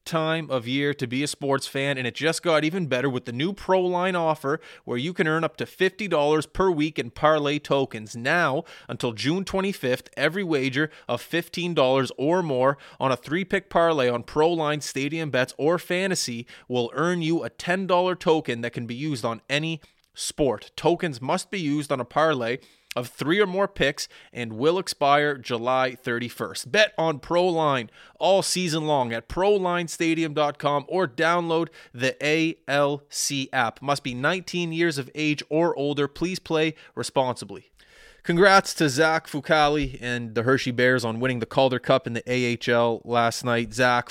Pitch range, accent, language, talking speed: 120-160 Hz, American, English, 175 wpm